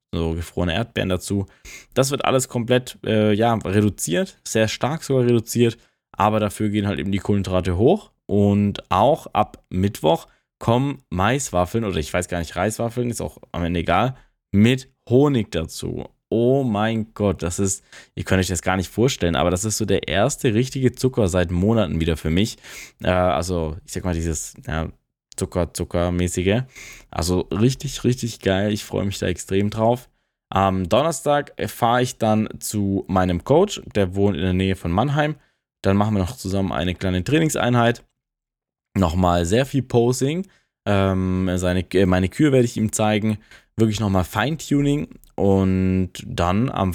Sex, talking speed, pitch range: male, 165 wpm, 90-120 Hz